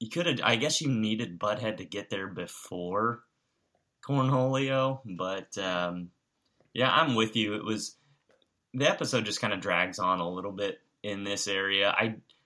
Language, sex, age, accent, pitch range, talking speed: English, male, 20-39, American, 100-130 Hz, 170 wpm